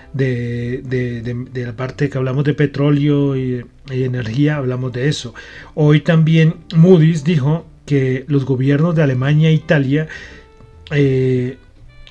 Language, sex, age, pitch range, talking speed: Spanish, male, 40-59, 125-155 Hz, 130 wpm